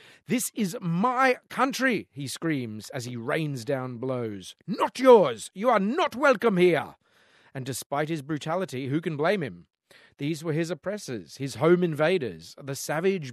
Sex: male